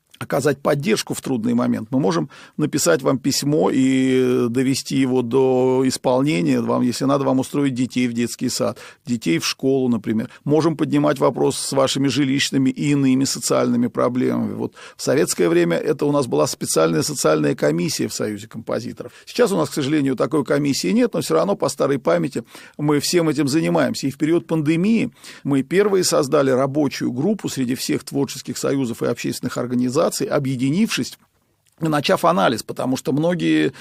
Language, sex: Russian, male